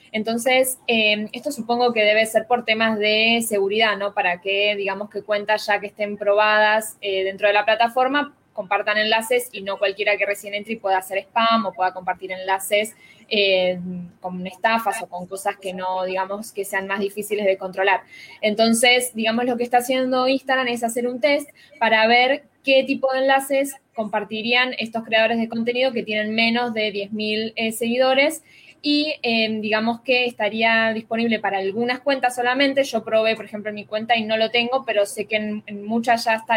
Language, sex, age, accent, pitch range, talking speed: Spanish, female, 10-29, Argentinian, 205-245 Hz, 185 wpm